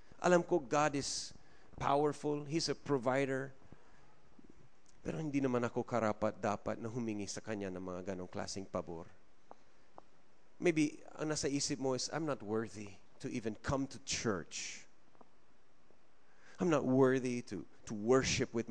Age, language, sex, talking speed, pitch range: 30-49, English, male, 140 wpm, 105-135 Hz